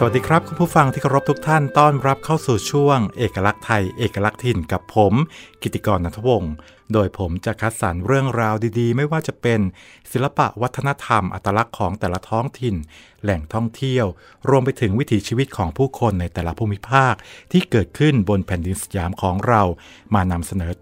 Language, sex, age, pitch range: Thai, male, 60-79, 95-120 Hz